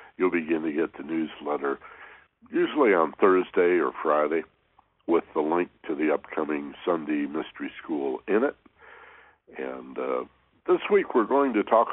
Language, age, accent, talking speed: English, 60-79, American, 150 wpm